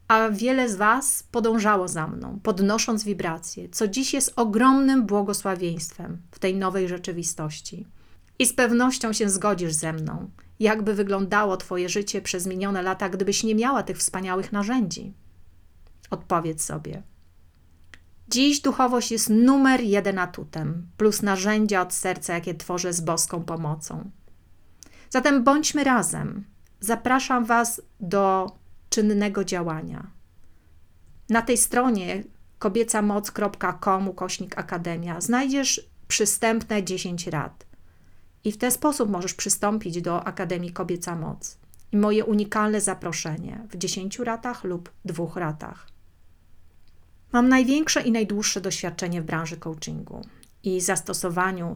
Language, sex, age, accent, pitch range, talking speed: Polish, female, 30-49, native, 170-220 Hz, 120 wpm